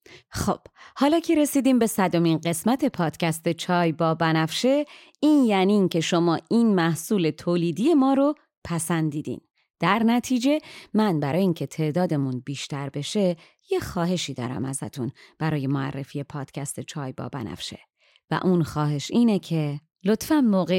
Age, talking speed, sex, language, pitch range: 30-49, 135 wpm, female, Persian, 160-230 Hz